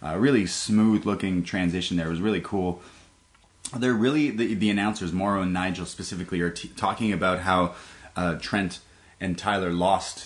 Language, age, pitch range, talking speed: English, 30-49, 90-105 Hz, 170 wpm